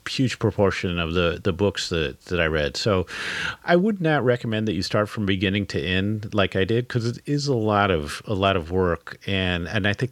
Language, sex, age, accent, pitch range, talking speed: English, male, 40-59, American, 85-110 Hz, 230 wpm